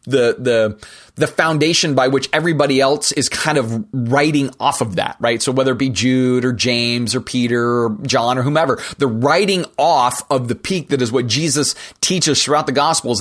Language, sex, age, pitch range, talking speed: English, male, 30-49, 120-150 Hz, 195 wpm